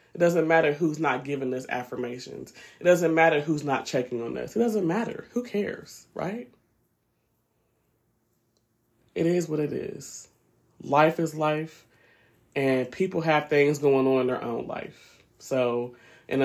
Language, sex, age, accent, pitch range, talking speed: English, male, 30-49, American, 130-175 Hz, 155 wpm